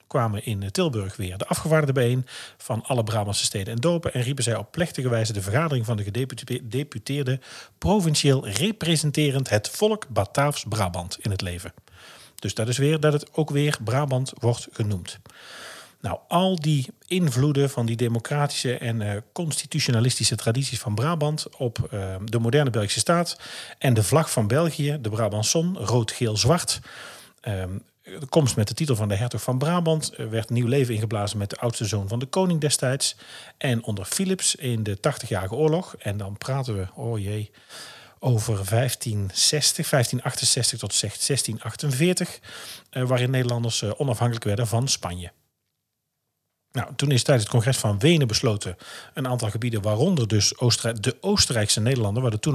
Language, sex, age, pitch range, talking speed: Dutch, male, 40-59, 110-145 Hz, 155 wpm